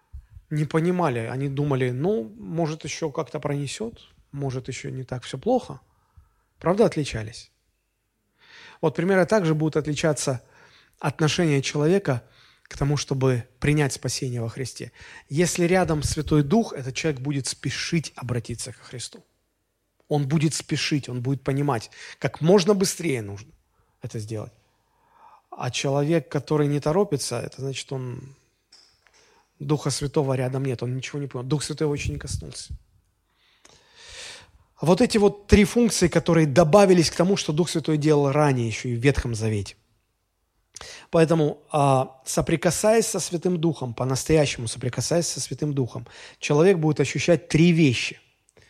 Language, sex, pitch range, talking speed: Russian, male, 125-165 Hz, 135 wpm